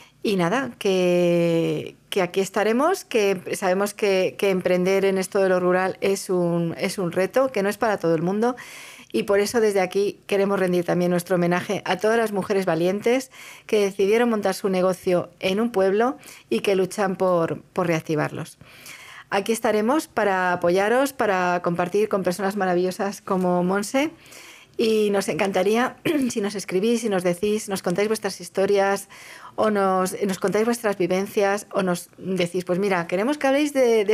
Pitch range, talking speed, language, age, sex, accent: 180-215 Hz, 170 wpm, Spanish, 40-59, female, Spanish